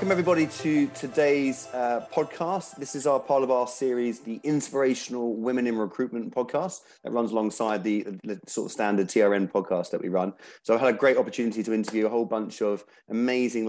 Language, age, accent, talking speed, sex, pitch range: English, 30-49, British, 195 wpm, male, 105-130 Hz